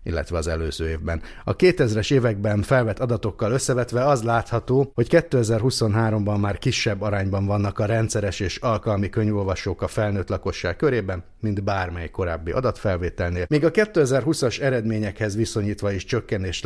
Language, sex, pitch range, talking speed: Hungarian, male, 100-120 Hz, 135 wpm